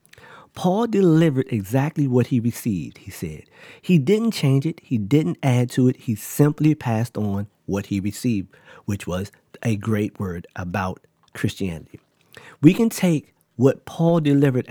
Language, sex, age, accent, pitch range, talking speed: English, male, 40-59, American, 110-145 Hz, 150 wpm